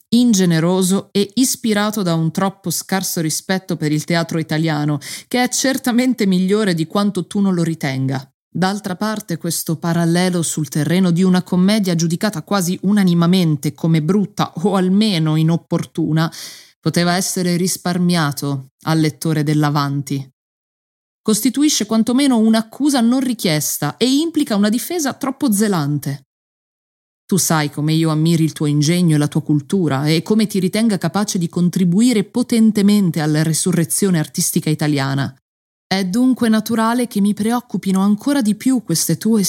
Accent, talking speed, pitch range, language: native, 140 wpm, 160-205 Hz, Italian